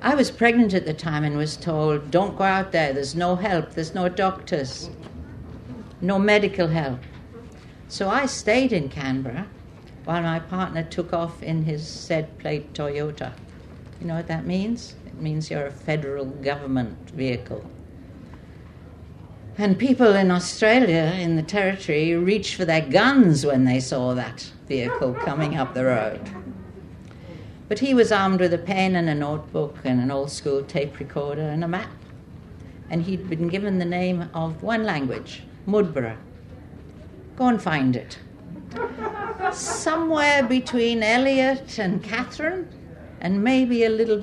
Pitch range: 135-205 Hz